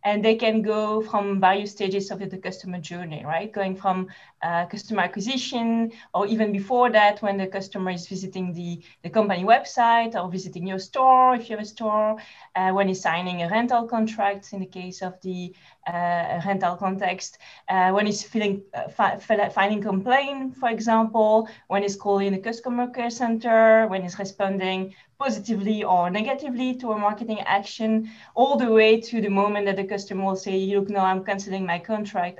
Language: English